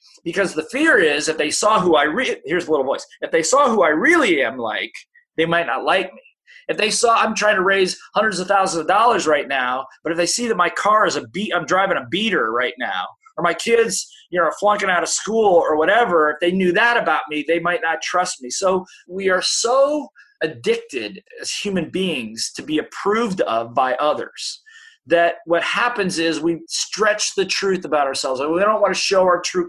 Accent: American